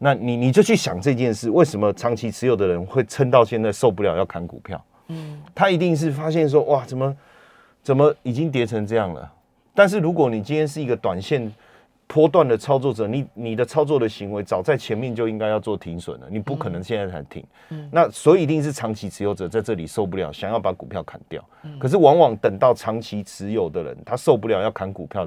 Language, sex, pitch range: Chinese, male, 100-150 Hz